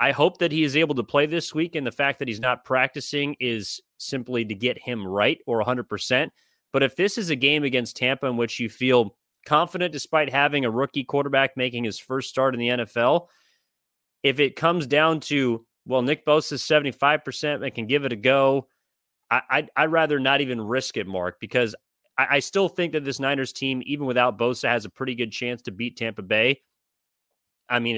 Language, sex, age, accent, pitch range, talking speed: English, male, 30-49, American, 120-145 Hz, 210 wpm